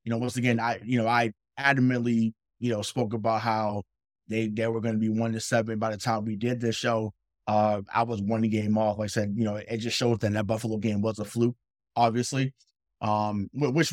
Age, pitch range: 20-39, 100-115 Hz